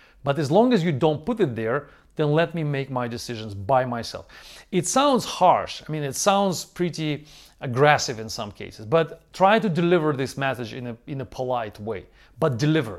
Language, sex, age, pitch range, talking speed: English, male, 40-59, 125-180 Hz, 200 wpm